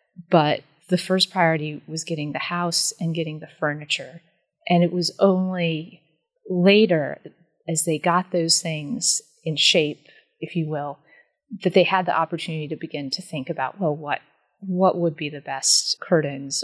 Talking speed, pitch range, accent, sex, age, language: 160 wpm, 155-185 Hz, American, female, 30-49, English